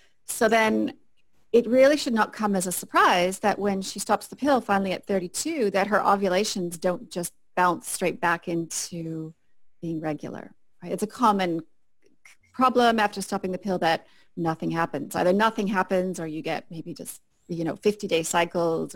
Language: English